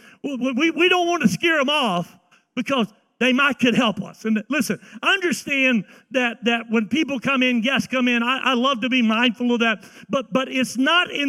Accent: American